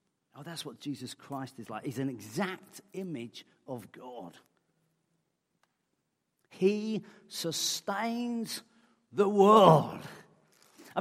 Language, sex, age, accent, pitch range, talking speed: English, male, 40-59, British, 145-220 Hz, 100 wpm